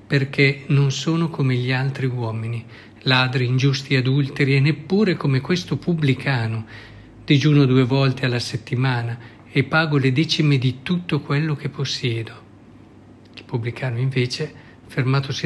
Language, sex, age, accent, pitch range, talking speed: Italian, male, 50-69, native, 115-145 Hz, 130 wpm